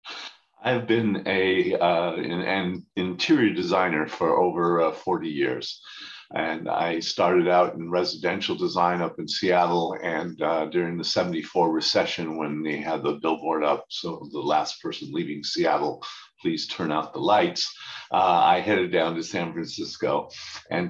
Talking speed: 155 wpm